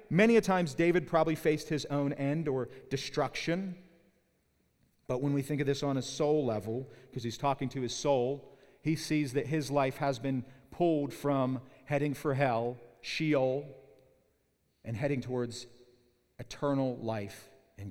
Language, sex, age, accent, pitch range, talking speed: English, male, 40-59, American, 140-195 Hz, 155 wpm